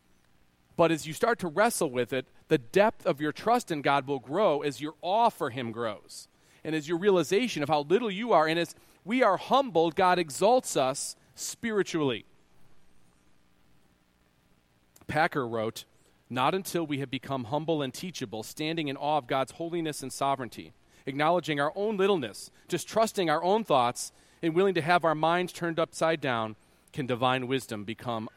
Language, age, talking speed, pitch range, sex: English, 40-59, 170 wpm, 120-165 Hz, male